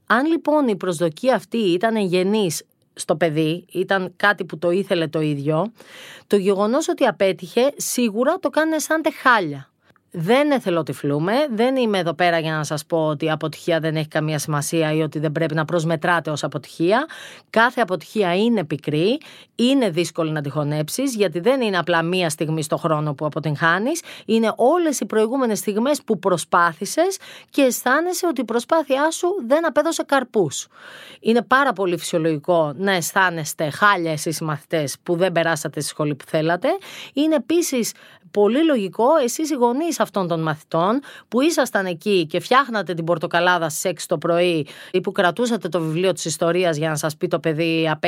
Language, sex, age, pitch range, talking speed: Greek, female, 30-49, 165-235 Hz, 170 wpm